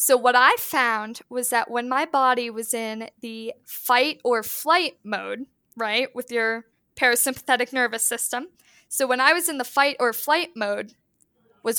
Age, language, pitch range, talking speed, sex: 10-29, English, 230-265 Hz, 150 wpm, female